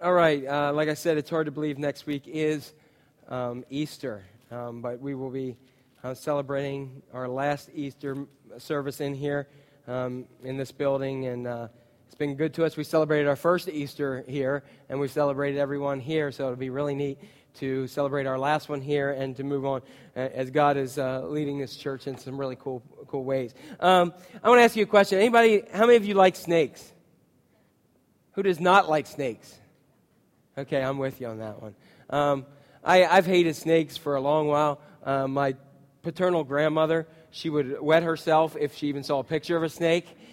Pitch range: 135-165 Hz